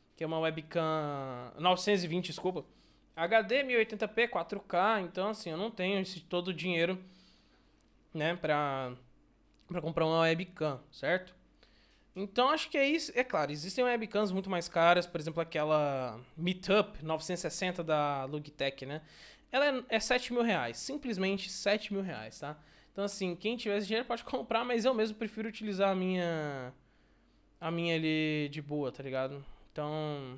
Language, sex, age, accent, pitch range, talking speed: Portuguese, male, 20-39, Brazilian, 165-225 Hz, 155 wpm